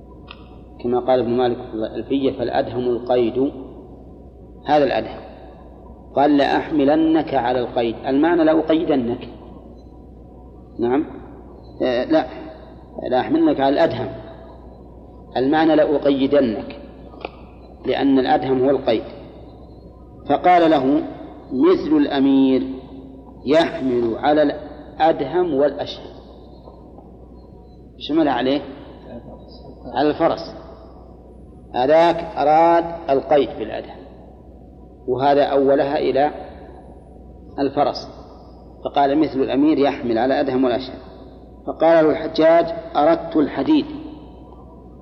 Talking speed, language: 75 wpm, Arabic